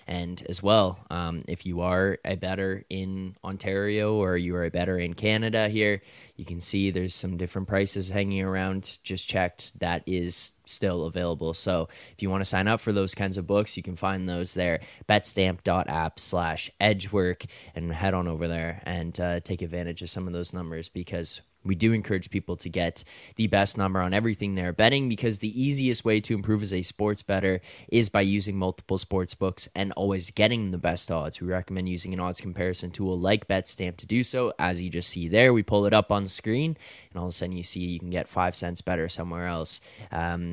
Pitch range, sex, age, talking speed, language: 90-100 Hz, male, 10-29, 215 wpm, English